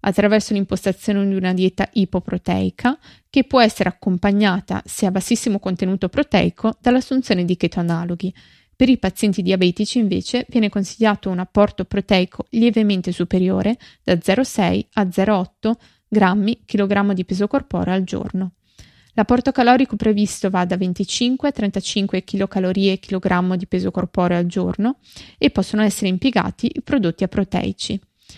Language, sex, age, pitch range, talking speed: Italian, female, 20-39, 185-225 Hz, 135 wpm